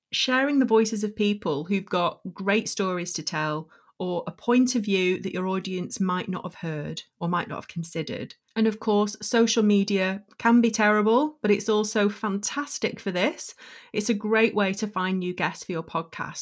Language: English